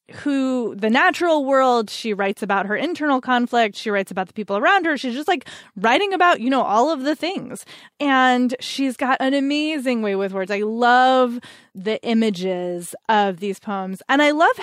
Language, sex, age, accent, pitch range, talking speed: English, female, 20-39, American, 200-255 Hz, 190 wpm